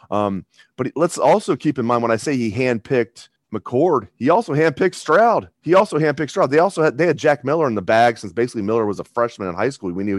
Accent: American